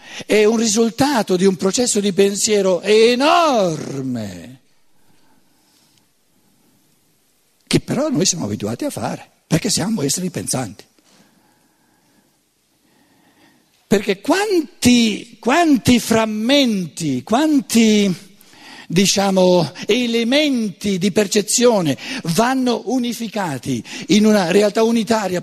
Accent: native